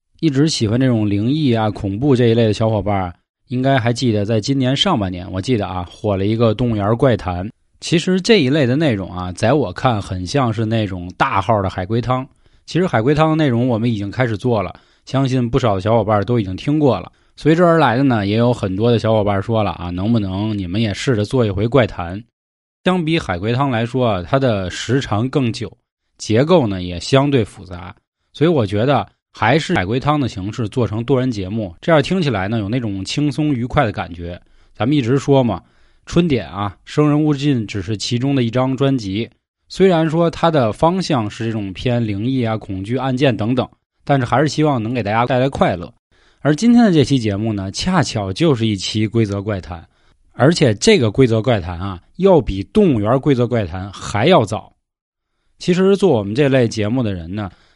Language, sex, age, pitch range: Chinese, male, 20-39, 100-140 Hz